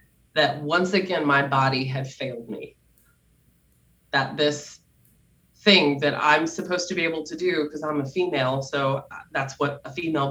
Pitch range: 140-165 Hz